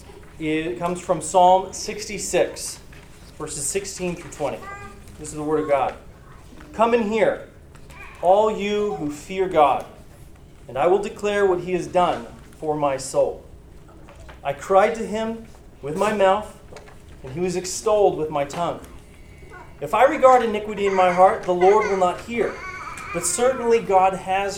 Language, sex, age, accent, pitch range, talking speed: English, male, 30-49, American, 170-215 Hz, 155 wpm